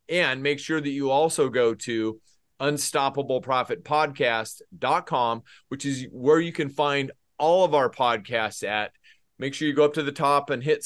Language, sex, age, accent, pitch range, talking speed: English, male, 30-49, American, 120-150 Hz, 165 wpm